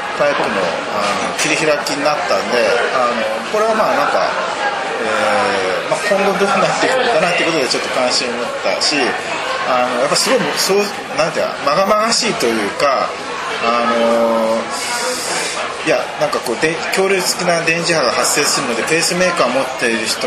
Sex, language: male, Japanese